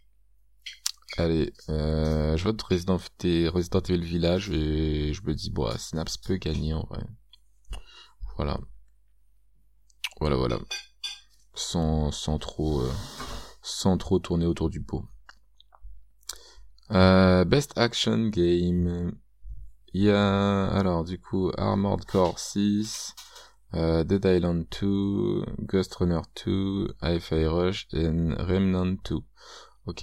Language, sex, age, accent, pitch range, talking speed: French, male, 20-39, French, 65-95 Hz, 115 wpm